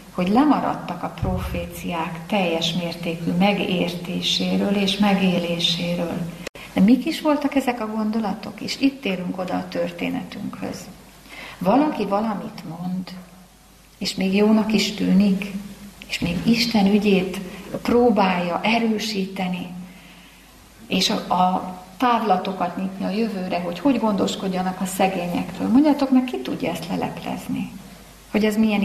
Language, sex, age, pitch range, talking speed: Hungarian, female, 30-49, 180-215 Hz, 120 wpm